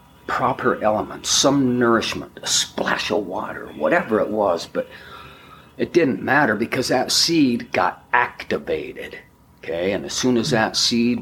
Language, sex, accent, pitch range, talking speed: English, male, American, 105-140 Hz, 145 wpm